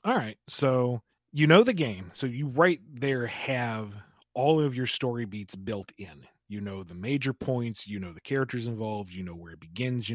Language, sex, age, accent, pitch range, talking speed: English, male, 30-49, American, 110-140 Hz, 205 wpm